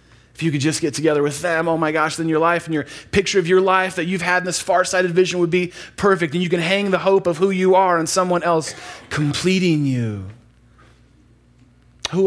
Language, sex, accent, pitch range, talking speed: English, male, American, 120-170 Hz, 225 wpm